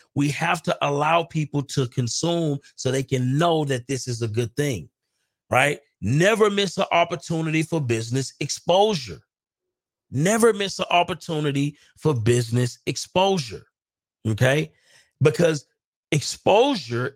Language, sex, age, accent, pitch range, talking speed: English, male, 40-59, American, 120-170 Hz, 120 wpm